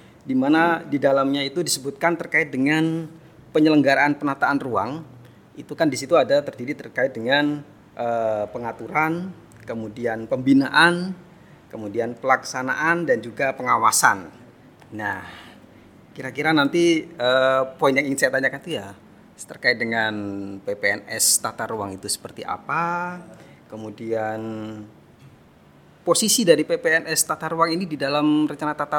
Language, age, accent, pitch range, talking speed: Indonesian, 30-49, native, 125-165 Hz, 115 wpm